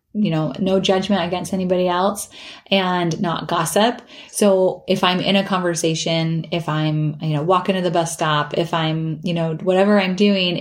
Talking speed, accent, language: 180 wpm, American, English